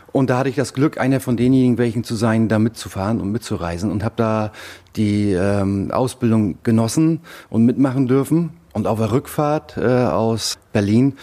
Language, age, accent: German, 30-49, German